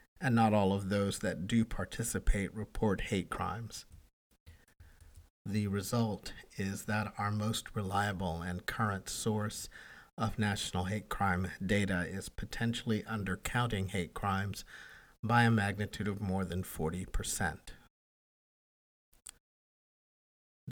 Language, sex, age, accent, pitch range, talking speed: English, male, 50-69, American, 90-110 Hz, 110 wpm